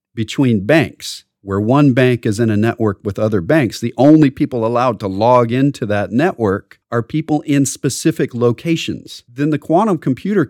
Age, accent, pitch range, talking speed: 40-59, American, 110-150 Hz, 170 wpm